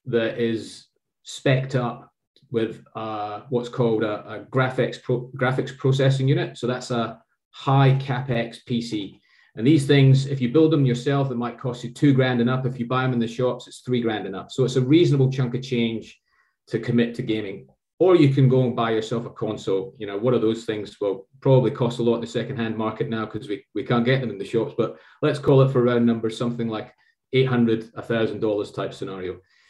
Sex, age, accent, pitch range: male, 30-49, British, 115-135 Hz